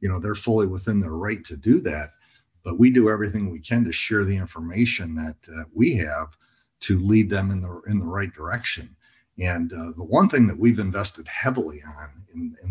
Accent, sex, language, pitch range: American, male, English, 80-100 Hz